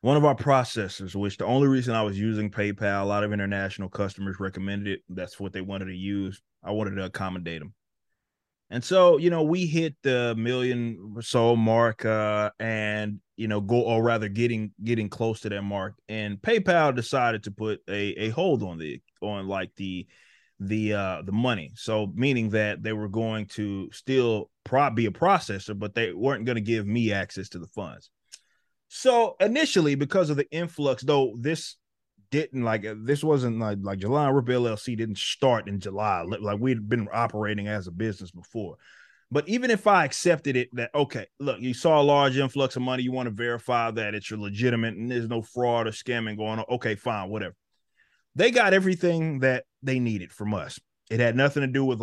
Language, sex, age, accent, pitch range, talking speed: English, male, 20-39, American, 105-130 Hz, 200 wpm